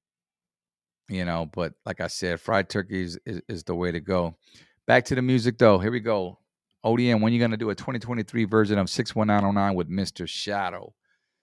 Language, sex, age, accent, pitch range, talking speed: English, male, 40-59, American, 90-130 Hz, 200 wpm